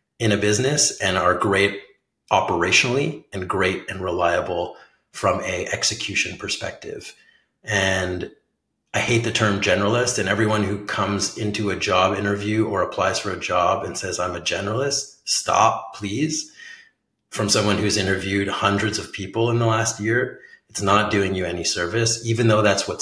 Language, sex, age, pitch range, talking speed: English, male, 30-49, 95-110 Hz, 160 wpm